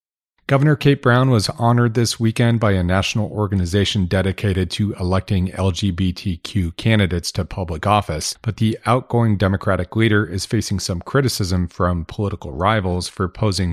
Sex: male